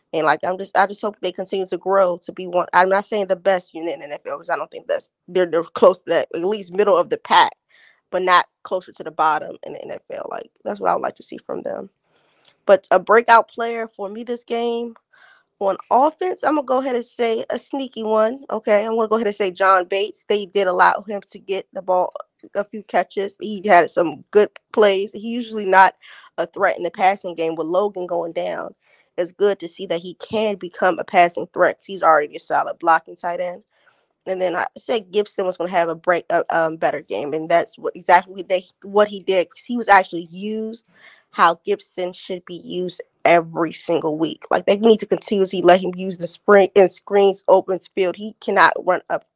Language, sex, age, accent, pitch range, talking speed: English, female, 20-39, American, 180-215 Hz, 230 wpm